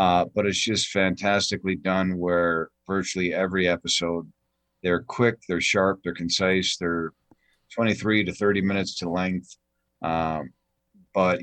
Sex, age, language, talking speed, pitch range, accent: male, 50-69, English, 130 wpm, 85-100 Hz, American